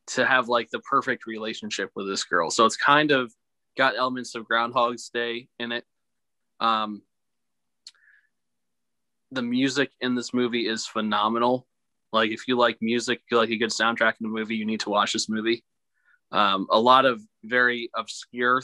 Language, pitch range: English, 110-125 Hz